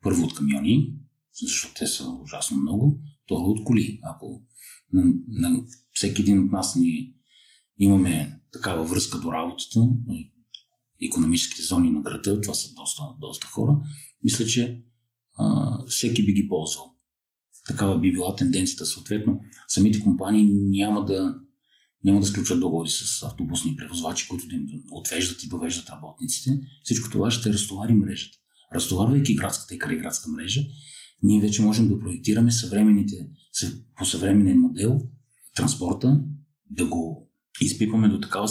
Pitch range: 100-135 Hz